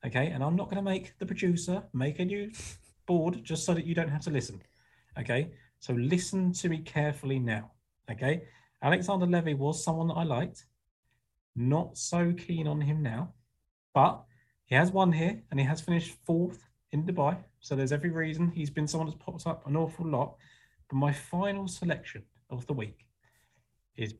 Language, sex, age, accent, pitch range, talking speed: English, male, 30-49, British, 120-160 Hz, 185 wpm